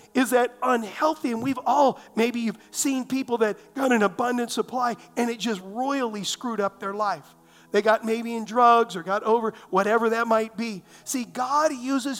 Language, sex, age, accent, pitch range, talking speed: English, male, 50-69, American, 210-260 Hz, 185 wpm